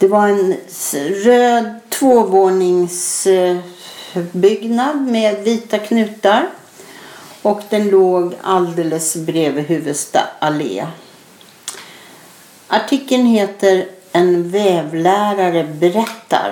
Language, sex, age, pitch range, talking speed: English, female, 60-79, 170-225 Hz, 75 wpm